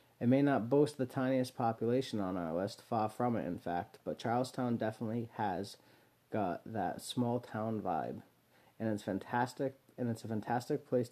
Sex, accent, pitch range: male, American, 110-130 Hz